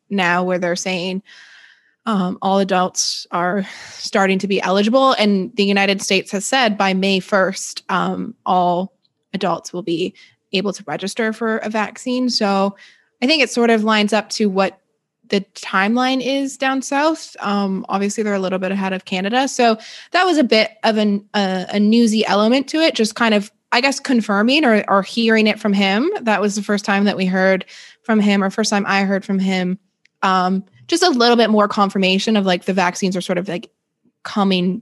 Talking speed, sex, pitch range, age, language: 195 wpm, female, 190-225 Hz, 20-39, English